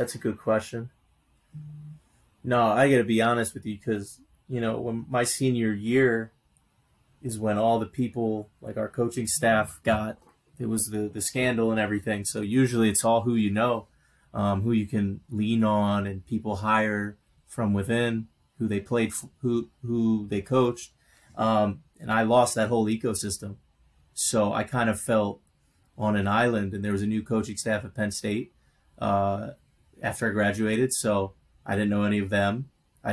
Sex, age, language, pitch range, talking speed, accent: male, 30-49, English, 105-115 Hz, 175 wpm, American